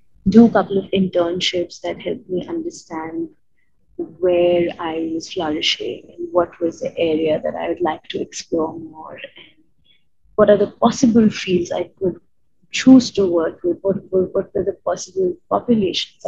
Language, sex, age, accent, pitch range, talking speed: English, female, 20-39, Indian, 165-205 Hz, 160 wpm